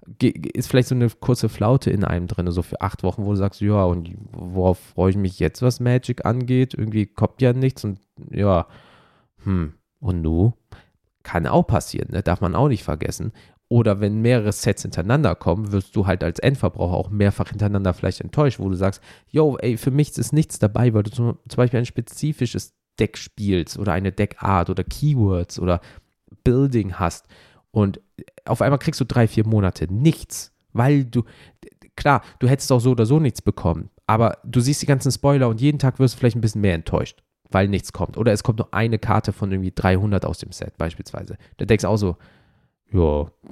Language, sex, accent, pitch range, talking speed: German, male, German, 95-125 Hz, 200 wpm